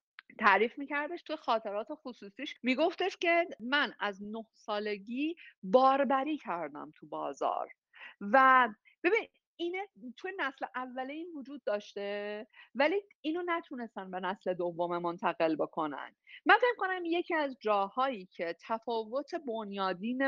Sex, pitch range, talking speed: female, 200-275 Hz, 120 wpm